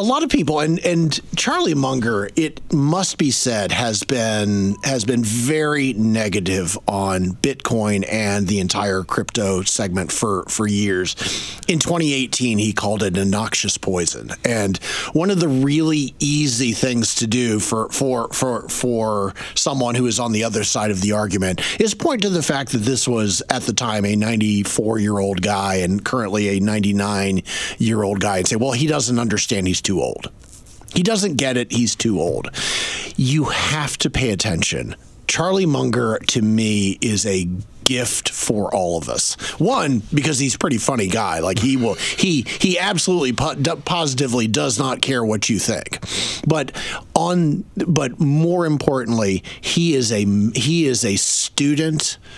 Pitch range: 100-135 Hz